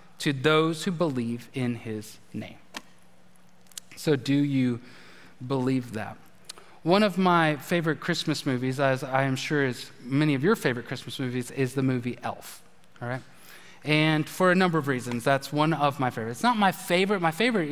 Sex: male